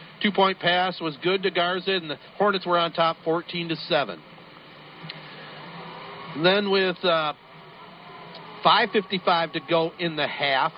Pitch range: 160-195 Hz